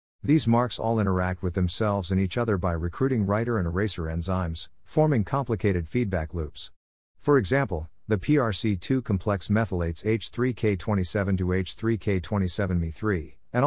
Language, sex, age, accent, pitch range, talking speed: English, male, 50-69, American, 90-110 Hz, 125 wpm